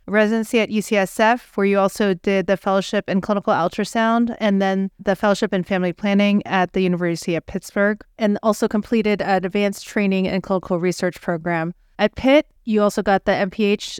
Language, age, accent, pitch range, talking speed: English, 30-49, American, 190-215 Hz, 175 wpm